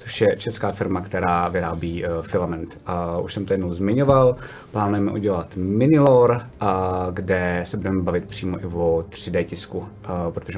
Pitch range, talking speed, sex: 95-110 Hz, 140 wpm, male